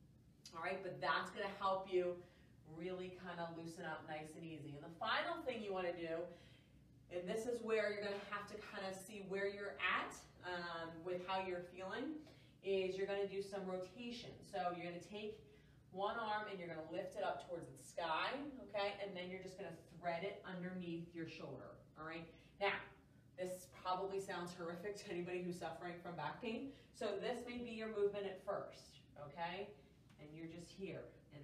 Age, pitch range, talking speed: 30-49, 160-195 Hz, 205 wpm